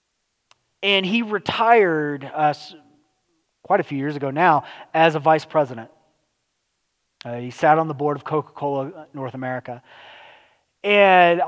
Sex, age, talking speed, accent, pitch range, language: male, 30-49, 130 wpm, American, 150-195 Hz, English